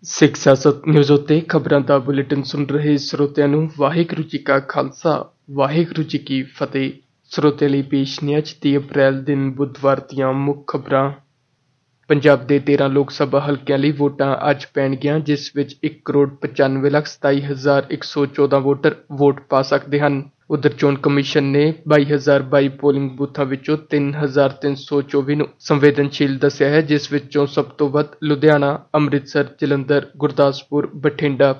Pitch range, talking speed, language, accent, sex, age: 140-150 Hz, 120 wpm, English, Indian, male, 20-39